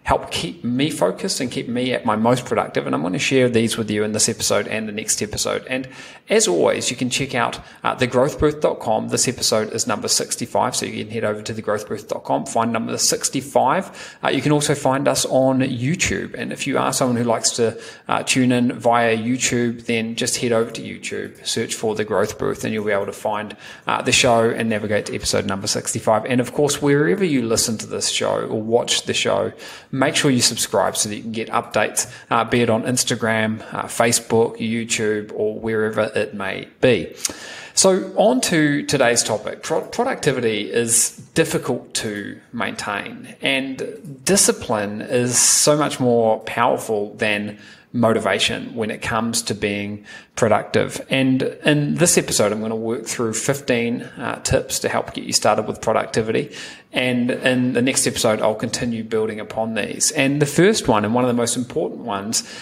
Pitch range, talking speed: 110-135 Hz, 190 wpm